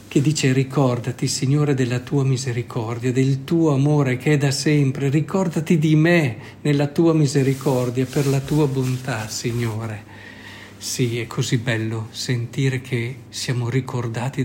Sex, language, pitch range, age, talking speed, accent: male, Italian, 120-145 Hz, 50-69, 135 wpm, native